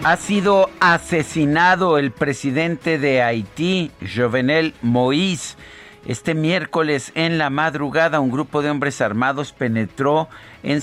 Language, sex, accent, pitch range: Spanish, male, Mexican, 110-140 Hz